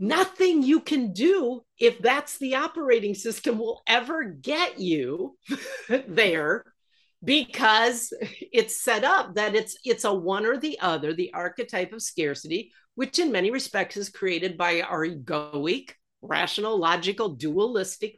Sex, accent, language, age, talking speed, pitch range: female, American, English, 50-69, 140 wpm, 180-265 Hz